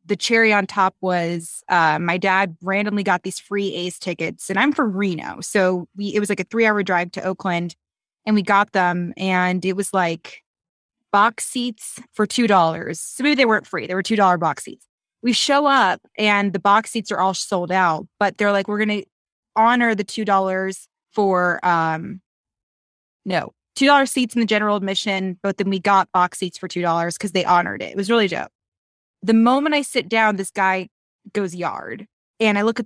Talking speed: 195 wpm